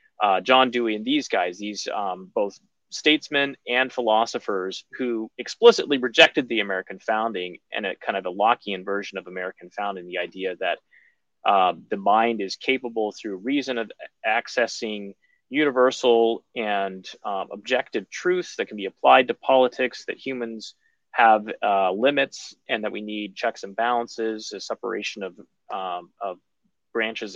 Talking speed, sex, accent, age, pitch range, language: 150 wpm, male, American, 30-49, 100-130 Hz, English